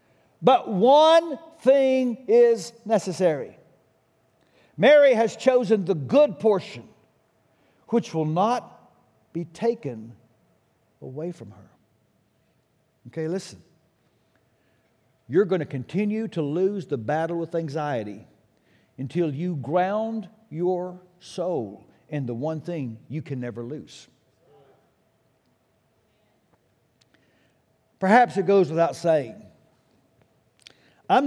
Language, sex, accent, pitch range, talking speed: English, male, American, 140-225 Hz, 95 wpm